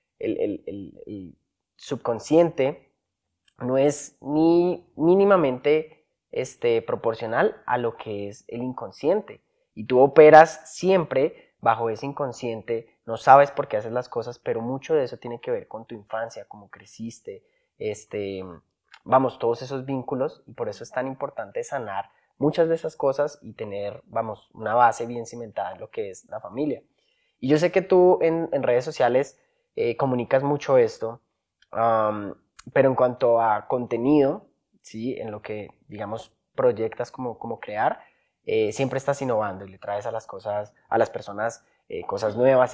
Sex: male